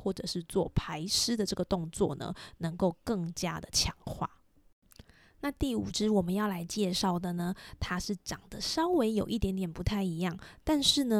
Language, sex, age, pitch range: Chinese, female, 20-39, 175-215 Hz